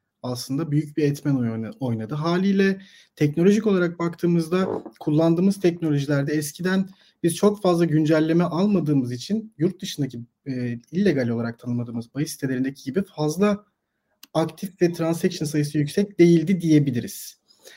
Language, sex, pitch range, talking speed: Turkish, male, 140-185 Hz, 120 wpm